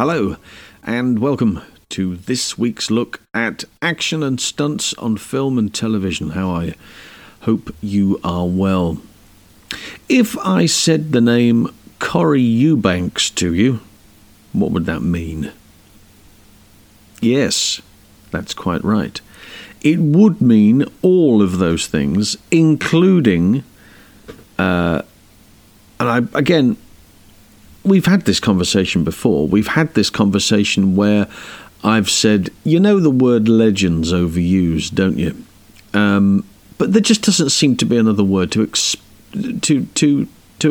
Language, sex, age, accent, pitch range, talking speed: English, male, 50-69, British, 100-135 Hz, 125 wpm